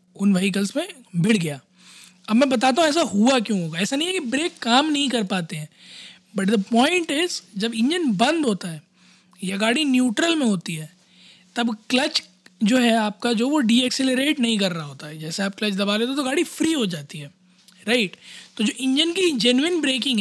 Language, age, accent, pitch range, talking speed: Hindi, 20-39, native, 190-270 Hz, 210 wpm